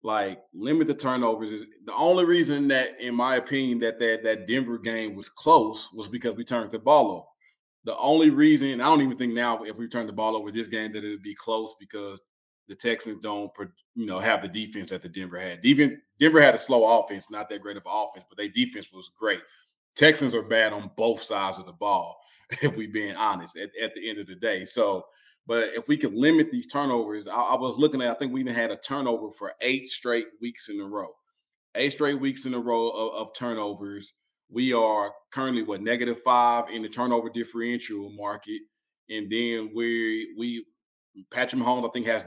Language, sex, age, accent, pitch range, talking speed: English, male, 20-39, American, 110-130 Hz, 215 wpm